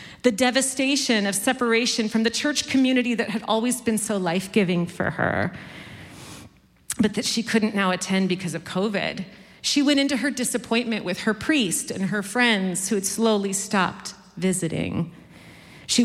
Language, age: English, 40-59